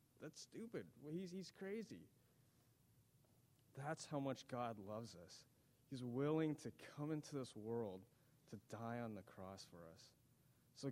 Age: 30-49